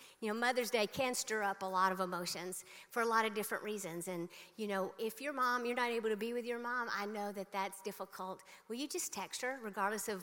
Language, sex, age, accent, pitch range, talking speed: English, female, 50-69, American, 185-225 Hz, 250 wpm